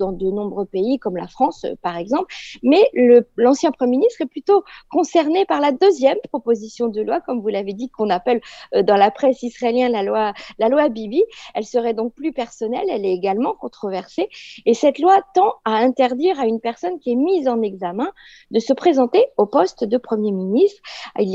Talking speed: 190 wpm